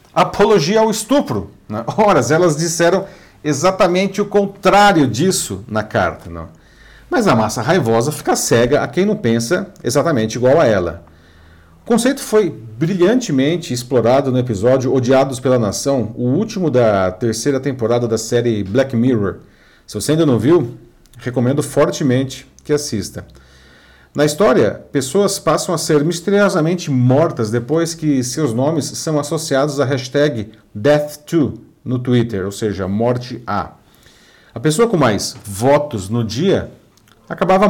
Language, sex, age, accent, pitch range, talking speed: Portuguese, male, 40-59, Brazilian, 115-175 Hz, 135 wpm